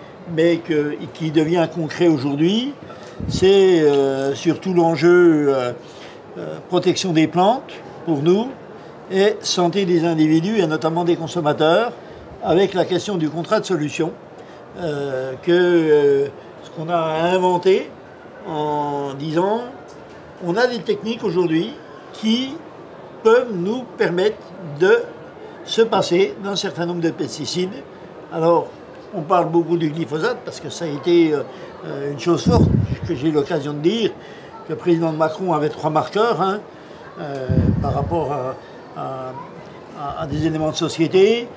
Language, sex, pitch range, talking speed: French, male, 150-180 Hz, 135 wpm